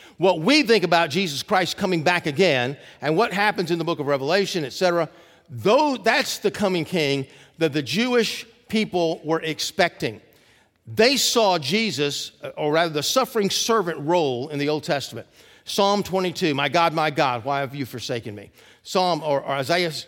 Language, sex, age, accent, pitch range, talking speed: English, male, 50-69, American, 150-200 Hz, 165 wpm